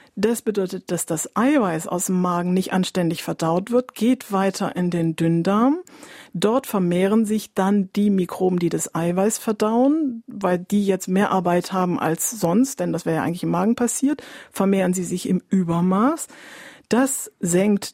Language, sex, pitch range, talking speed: German, female, 180-225 Hz, 165 wpm